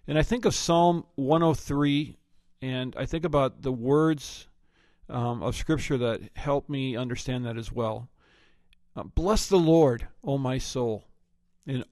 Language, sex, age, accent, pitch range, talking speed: English, male, 50-69, American, 115-145 Hz, 150 wpm